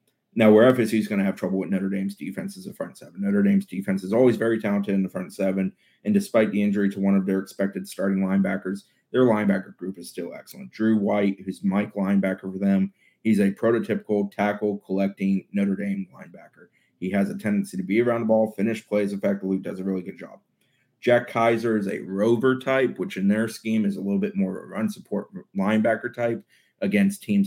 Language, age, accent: English, 30-49, American